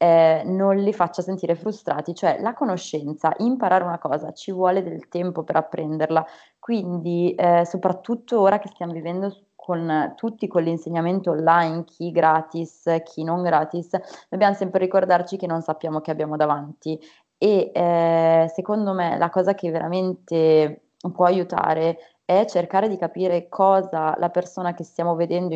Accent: native